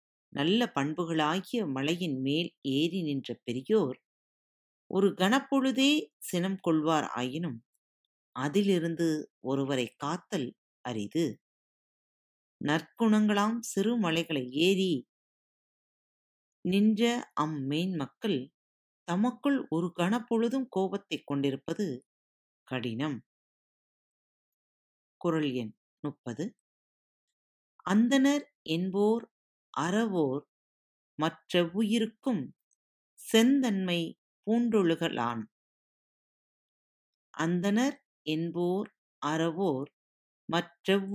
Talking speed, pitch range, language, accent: 60 wpm, 135-215 Hz, Tamil, native